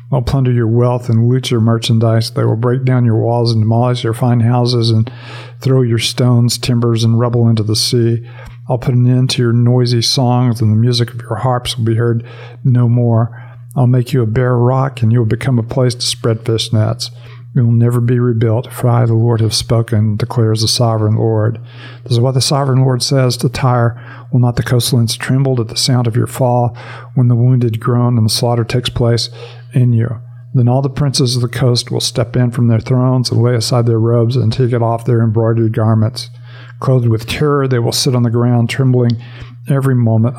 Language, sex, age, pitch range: English, male, 50-69, 115-125 Hz